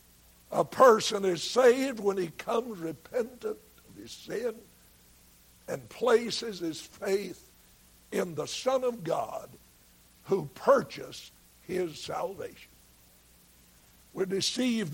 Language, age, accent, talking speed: English, 60-79, American, 105 wpm